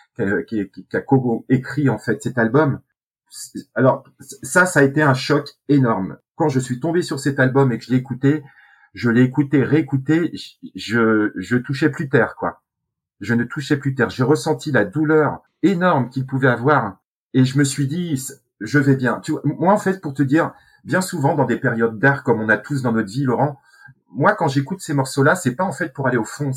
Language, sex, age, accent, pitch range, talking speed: French, male, 40-59, French, 120-150 Hz, 215 wpm